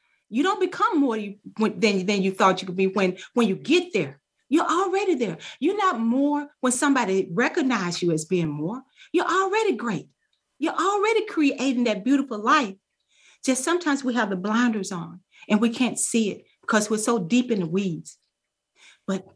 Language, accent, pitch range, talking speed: English, American, 190-290 Hz, 175 wpm